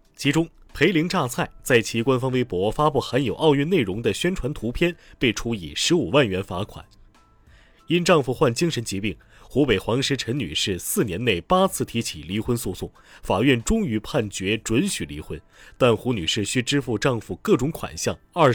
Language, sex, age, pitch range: Chinese, male, 30-49, 100-150 Hz